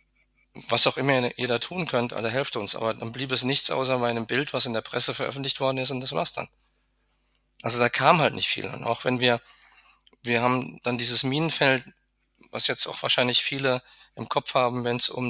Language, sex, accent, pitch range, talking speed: German, male, German, 120-140 Hz, 225 wpm